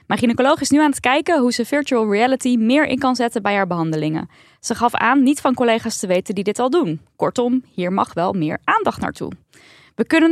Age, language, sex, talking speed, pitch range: 10-29, Dutch, female, 225 wpm, 205-275 Hz